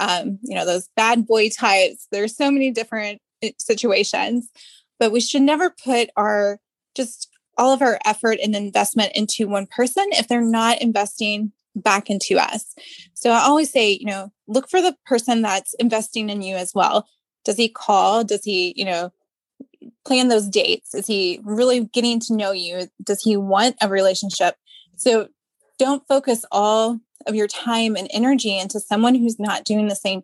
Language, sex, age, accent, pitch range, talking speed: English, female, 20-39, American, 200-255 Hz, 175 wpm